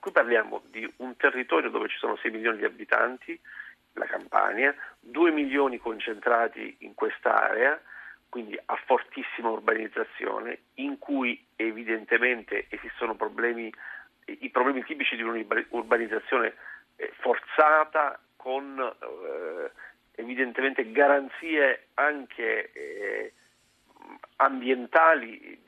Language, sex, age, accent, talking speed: Italian, male, 50-69, native, 90 wpm